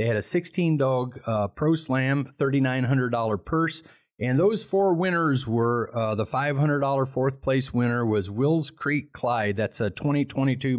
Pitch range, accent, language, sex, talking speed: 105-135 Hz, American, English, male, 145 wpm